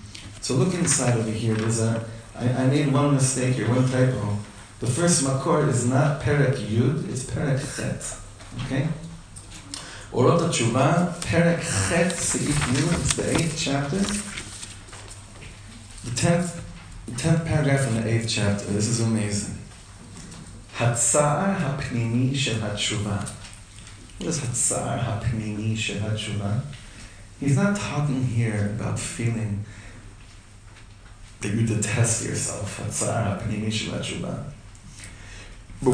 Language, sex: English, male